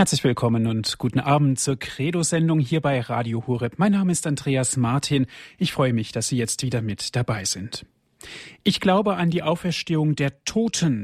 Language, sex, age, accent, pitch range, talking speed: German, male, 30-49, German, 120-150 Hz, 180 wpm